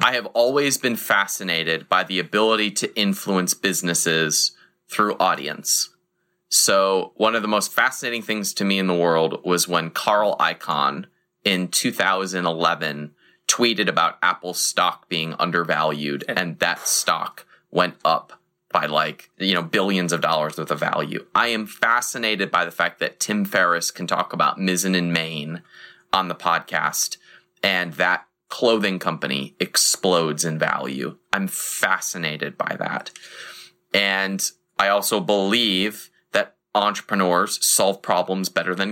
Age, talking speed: 20-39, 140 wpm